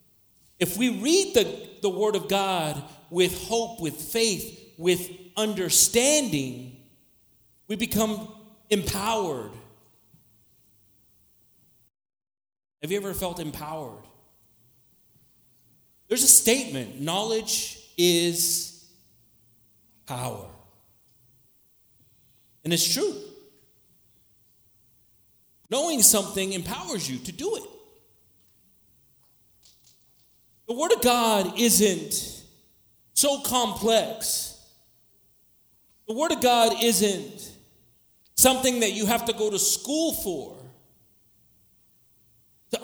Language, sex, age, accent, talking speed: English, male, 40-59, American, 85 wpm